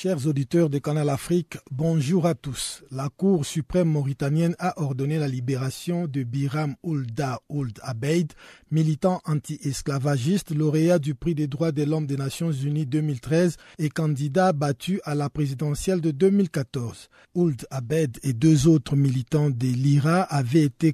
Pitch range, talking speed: 135-165 Hz, 150 wpm